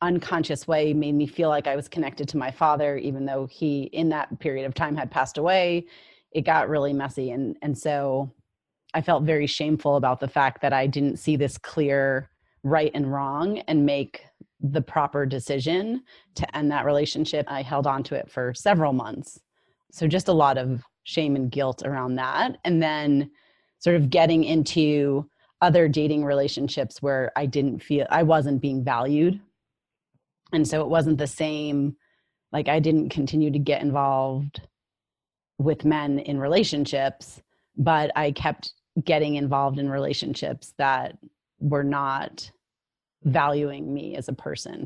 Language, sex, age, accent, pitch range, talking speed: English, female, 30-49, American, 140-155 Hz, 165 wpm